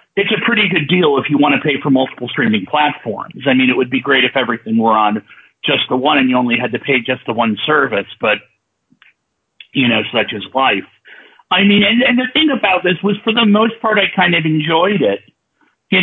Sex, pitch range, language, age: male, 135-195 Hz, English, 50-69